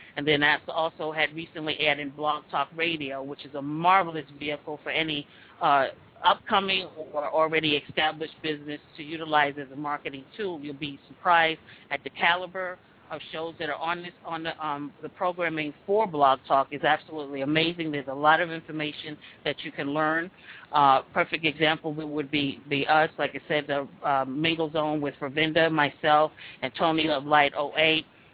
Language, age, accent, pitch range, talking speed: English, 40-59, American, 150-165 Hz, 175 wpm